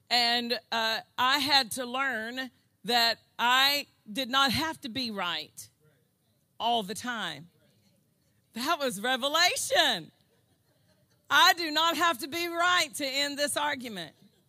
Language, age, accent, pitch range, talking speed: English, 40-59, American, 215-275 Hz, 130 wpm